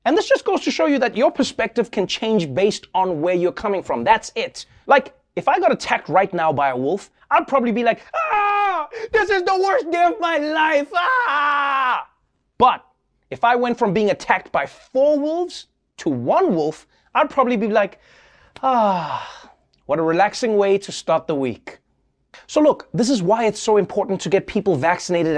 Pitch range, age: 185-275 Hz, 30-49